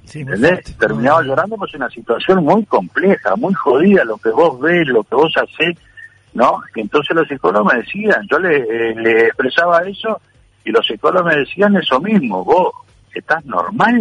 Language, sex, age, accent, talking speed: Spanish, male, 60-79, Argentinian, 165 wpm